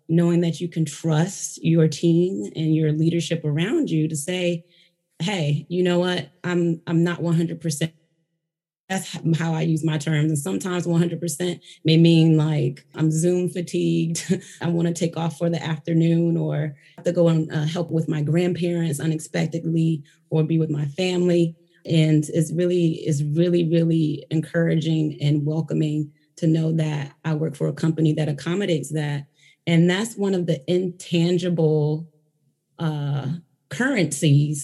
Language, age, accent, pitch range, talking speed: English, 30-49, American, 150-170 Hz, 155 wpm